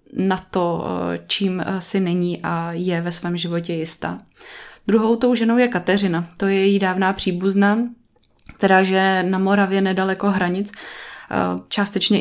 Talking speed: 140 wpm